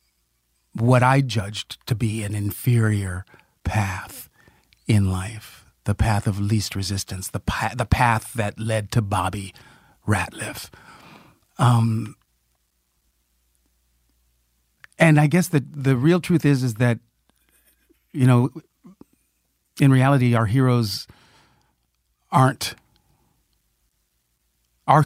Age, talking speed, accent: 50-69, 100 wpm, American